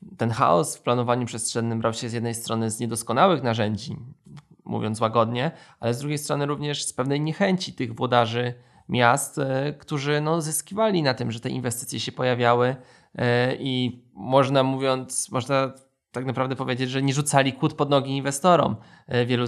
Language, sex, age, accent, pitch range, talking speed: Polish, male, 20-39, native, 120-145 Hz, 155 wpm